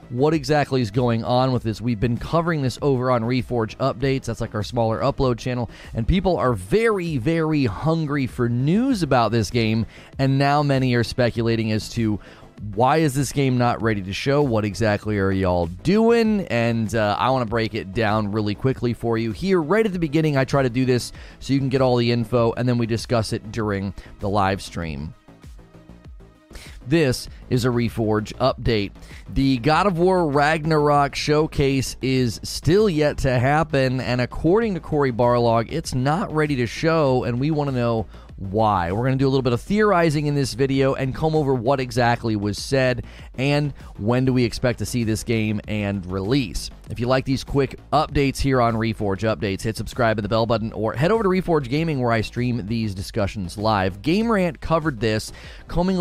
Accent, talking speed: American, 200 wpm